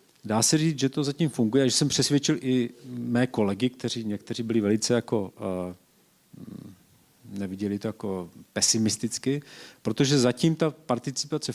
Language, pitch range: Czech, 115-140 Hz